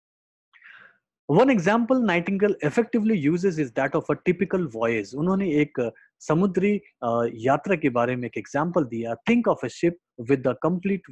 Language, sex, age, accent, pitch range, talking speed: Hindi, male, 30-49, native, 125-185 Hz, 150 wpm